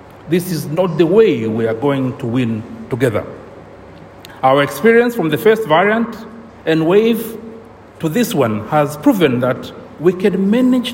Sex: male